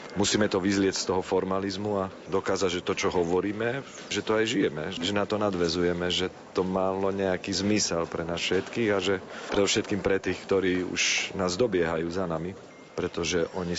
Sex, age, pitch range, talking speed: male, 40-59, 90-105 Hz, 180 wpm